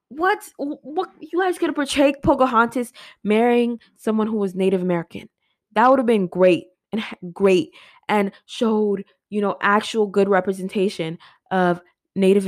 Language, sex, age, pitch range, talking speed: English, female, 20-39, 185-235 Hz, 140 wpm